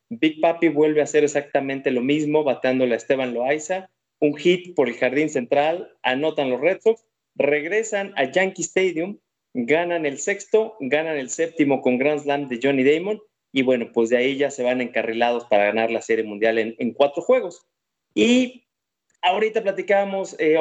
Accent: Mexican